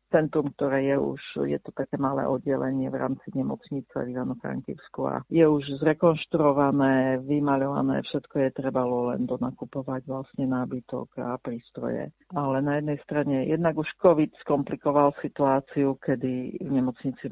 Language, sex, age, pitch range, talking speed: Slovak, female, 50-69, 130-145 Hz, 140 wpm